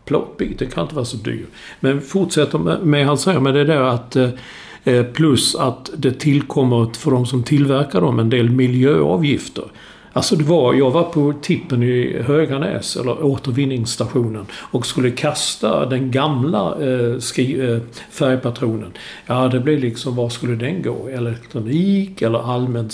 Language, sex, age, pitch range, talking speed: English, male, 60-79, 120-155 Hz, 145 wpm